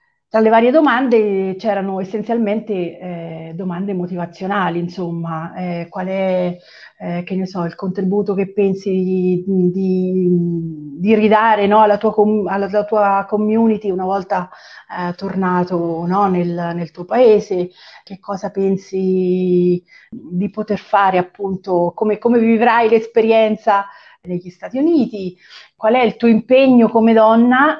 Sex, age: female, 40-59